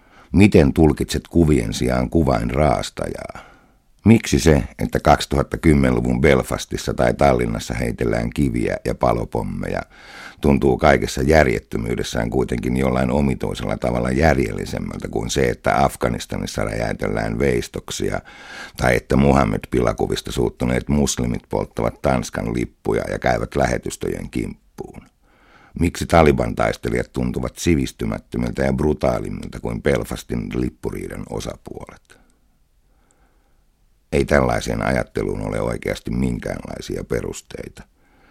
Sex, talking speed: male, 95 wpm